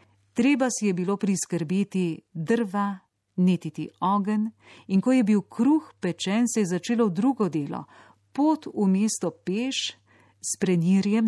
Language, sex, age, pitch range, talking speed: Italian, female, 40-59, 160-210 Hz, 135 wpm